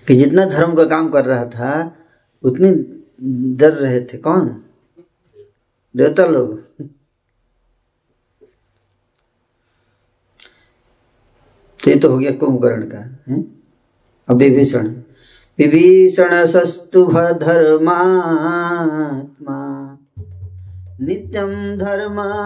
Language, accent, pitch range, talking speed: Hindi, native, 120-165 Hz, 70 wpm